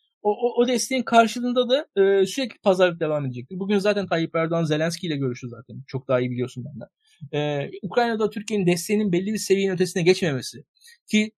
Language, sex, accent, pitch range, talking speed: Turkish, male, native, 150-210 Hz, 180 wpm